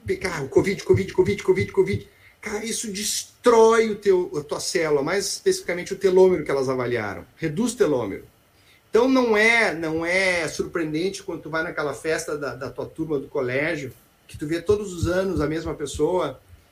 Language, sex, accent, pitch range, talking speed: Portuguese, male, Brazilian, 160-225 Hz, 170 wpm